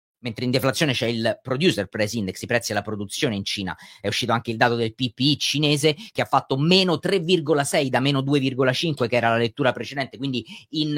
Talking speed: 195 wpm